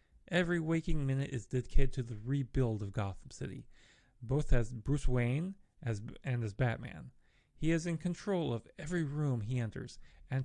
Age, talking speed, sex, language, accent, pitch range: 30-49, 165 wpm, male, English, American, 115-150 Hz